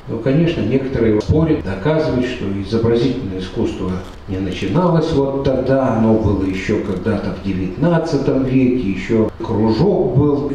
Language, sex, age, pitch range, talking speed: Russian, male, 60-79, 105-155 Hz, 125 wpm